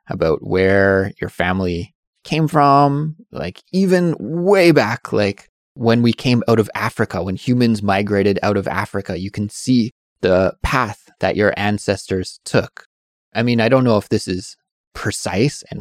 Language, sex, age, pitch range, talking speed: English, male, 20-39, 95-120 Hz, 160 wpm